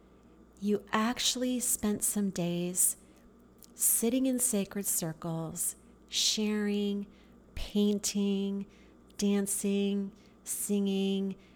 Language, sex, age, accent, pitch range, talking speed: English, female, 40-59, American, 170-220 Hz, 65 wpm